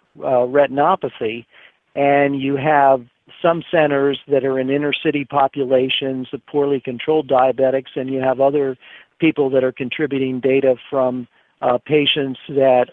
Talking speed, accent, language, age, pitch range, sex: 135 wpm, American, English, 50-69, 130-145 Hz, male